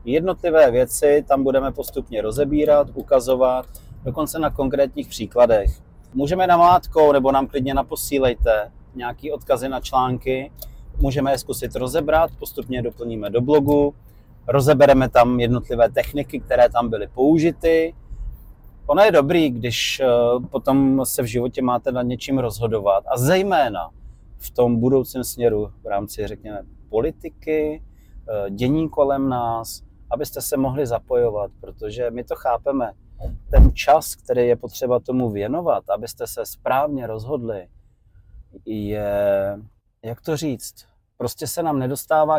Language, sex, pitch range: Czech, male, 115-140 Hz